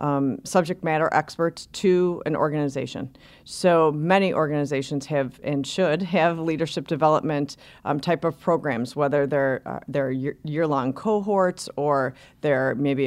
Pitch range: 140-165 Hz